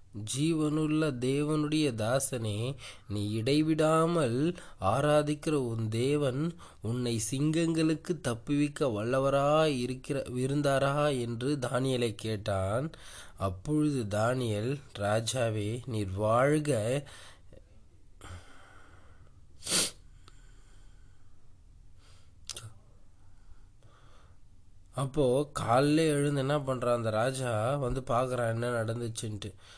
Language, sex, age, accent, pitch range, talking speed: Tamil, male, 20-39, native, 105-140 Hz, 70 wpm